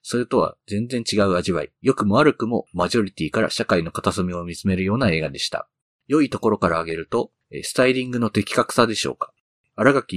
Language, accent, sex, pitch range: Japanese, native, male, 95-125 Hz